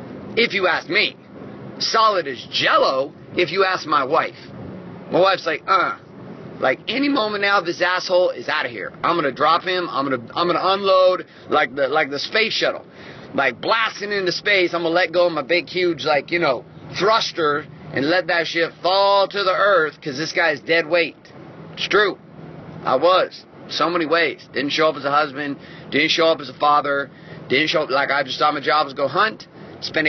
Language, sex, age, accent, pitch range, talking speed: English, male, 30-49, American, 140-175 Hz, 205 wpm